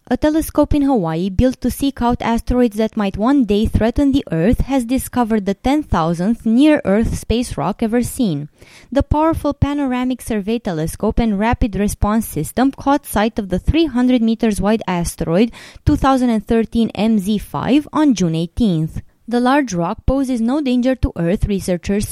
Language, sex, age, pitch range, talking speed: English, female, 20-39, 195-265 Hz, 145 wpm